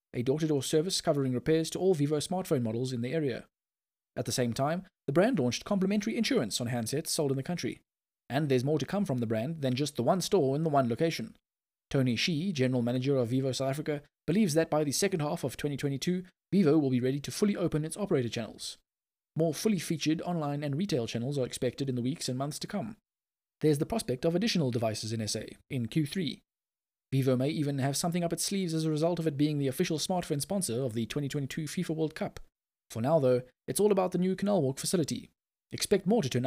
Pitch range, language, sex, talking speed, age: 130-180 Hz, English, male, 225 wpm, 20-39